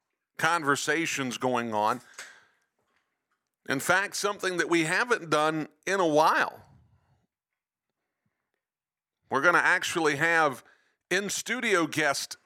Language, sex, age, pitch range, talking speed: English, male, 50-69, 140-175 Hz, 95 wpm